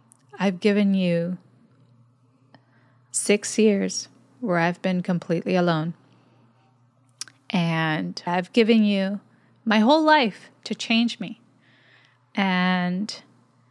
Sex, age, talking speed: female, 20-39, 90 wpm